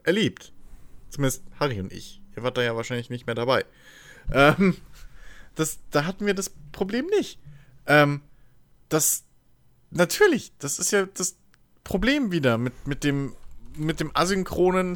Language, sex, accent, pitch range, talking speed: German, male, German, 105-165 Hz, 145 wpm